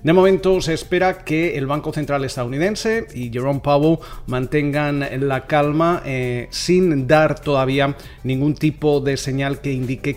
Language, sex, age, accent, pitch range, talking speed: Spanish, male, 30-49, Spanish, 125-140 Hz, 150 wpm